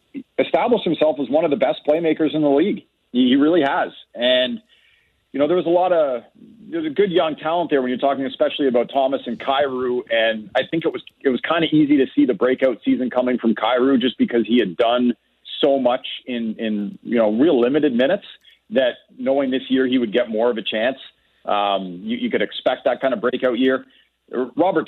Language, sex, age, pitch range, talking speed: English, male, 40-59, 120-155 Hz, 215 wpm